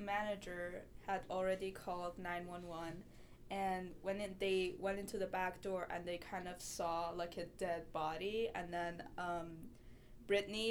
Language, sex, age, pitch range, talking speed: English, female, 10-29, 185-230 Hz, 145 wpm